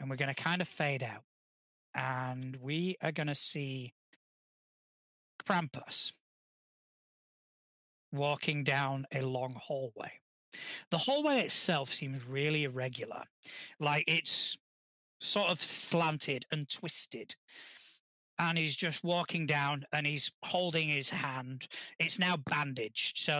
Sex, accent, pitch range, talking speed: male, British, 135-160 Hz, 120 wpm